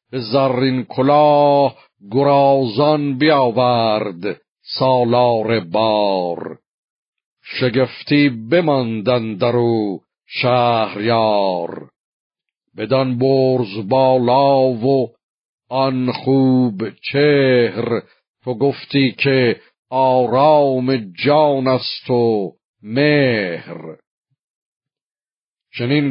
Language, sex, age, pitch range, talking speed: Persian, male, 50-69, 115-135 Hz, 65 wpm